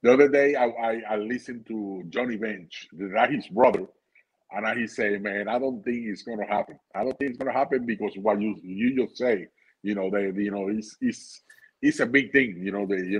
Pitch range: 110-145 Hz